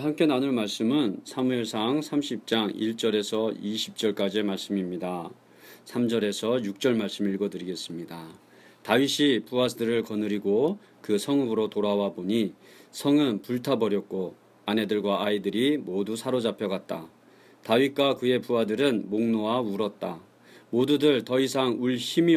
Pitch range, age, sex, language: 105-130 Hz, 40-59, male, Korean